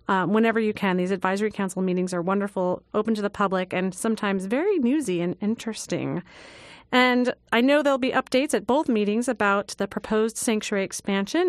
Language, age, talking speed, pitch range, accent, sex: English, 30-49, 180 wpm, 200-250 Hz, American, female